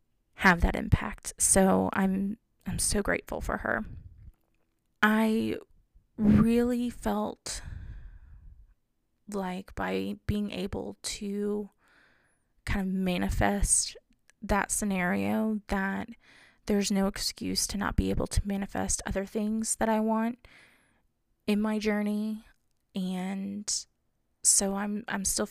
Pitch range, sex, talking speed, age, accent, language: 185-215 Hz, female, 110 wpm, 20-39, American, English